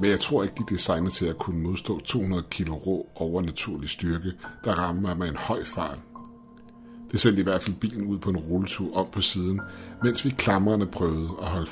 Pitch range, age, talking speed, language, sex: 85-105 Hz, 60-79, 210 wpm, Danish, male